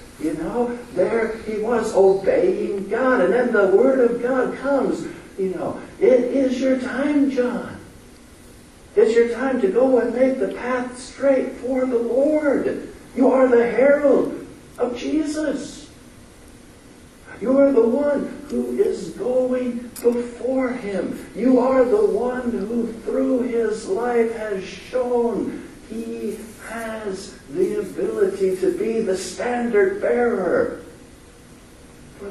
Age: 60-79